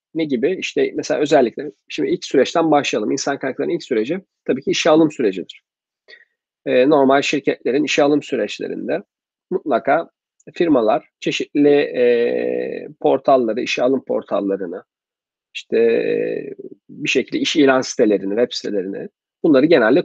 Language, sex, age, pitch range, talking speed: Turkish, male, 40-59, 125-175 Hz, 120 wpm